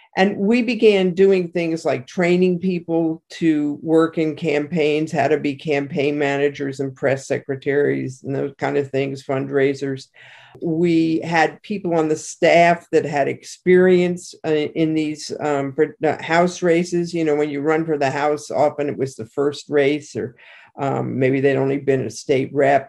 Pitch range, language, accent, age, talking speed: 140-170 Hz, English, American, 50-69, 165 wpm